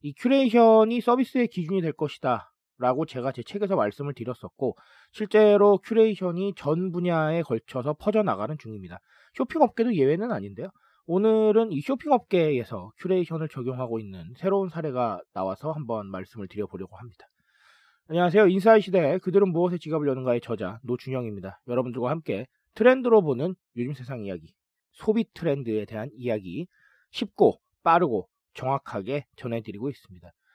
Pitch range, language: 130-210 Hz, Korean